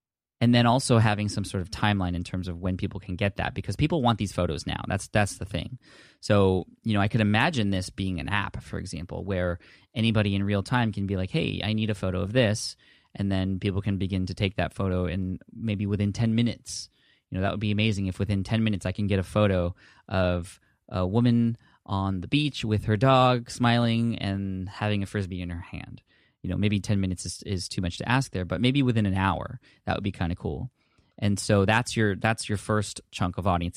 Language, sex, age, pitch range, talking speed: English, male, 20-39, 95-110 Hz, 235 wpm